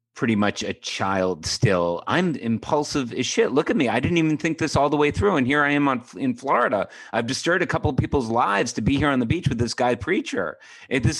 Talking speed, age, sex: 250 wpm, 30-49, male